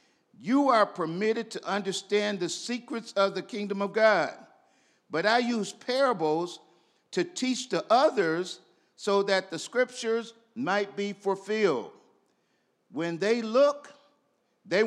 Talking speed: 125 wpm